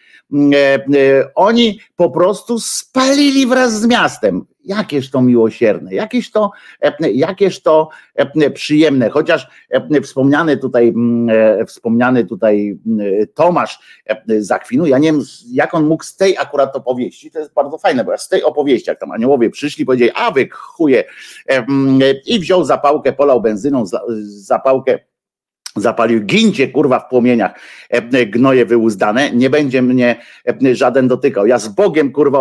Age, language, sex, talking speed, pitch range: 50-69, Polish, male, 135 wpm, 125-160 Hz